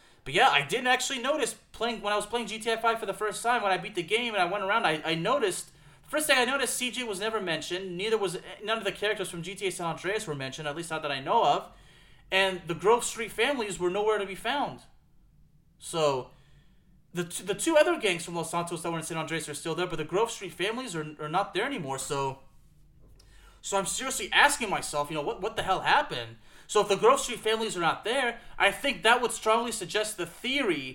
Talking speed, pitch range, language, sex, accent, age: 240 wpm, 160-220 Hz, English, male, American, 30-49